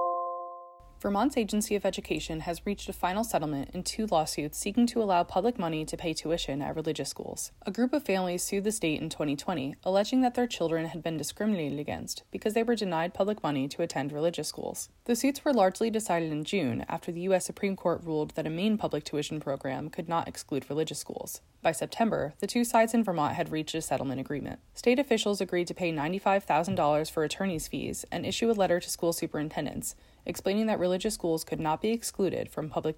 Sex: female